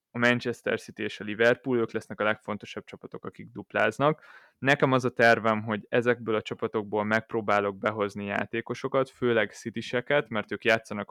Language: Hungarian